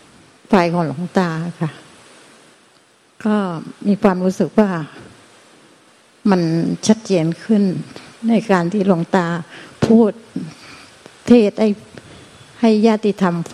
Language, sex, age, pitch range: Thai, female, 60-79, 170-210 Hz